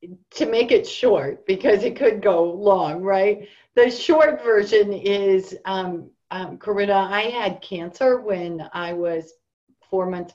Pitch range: 170-200 Hz